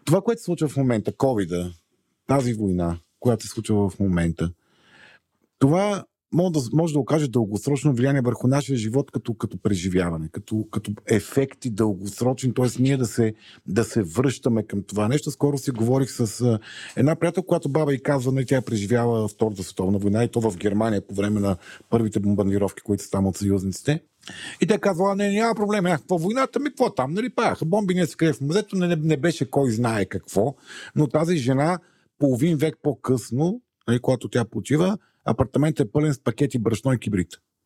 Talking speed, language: 180 wpm, Bulgarian